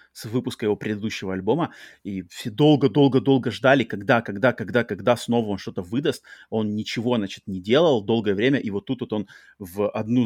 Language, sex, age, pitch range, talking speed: Russian, male, 30-49, 110-140 Hz, 165 wpm